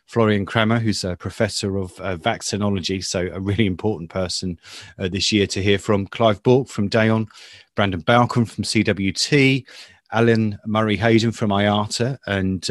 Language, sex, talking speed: English, male, 150 wpm